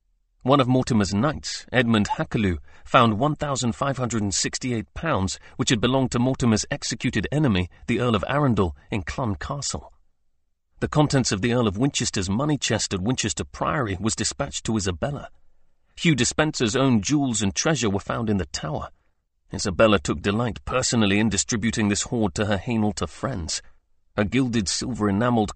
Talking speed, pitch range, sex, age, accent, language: 150 wpm, 95-125 Hz, male, 40-59, British, English